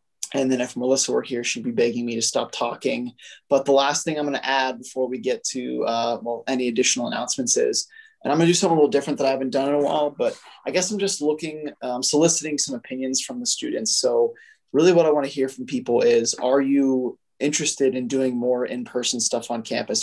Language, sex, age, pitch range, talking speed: English, male, 20-39, 120-140 Hz, 235 wpm